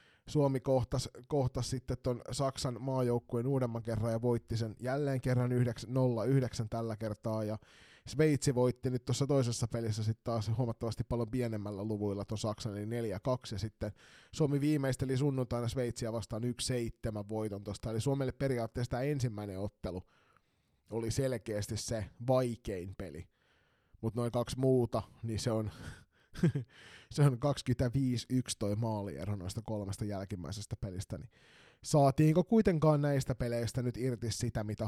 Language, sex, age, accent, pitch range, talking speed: Finnish, male, 20-39, native, 105-130 Hz, 130 wpm